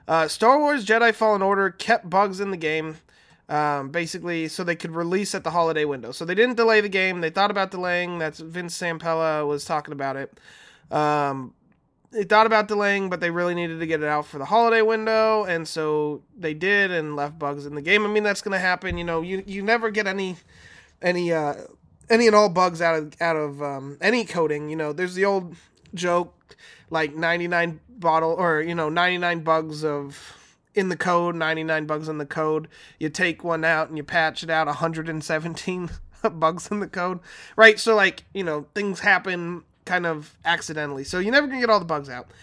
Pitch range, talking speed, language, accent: 155-200 Hz, 205 wpm, English, American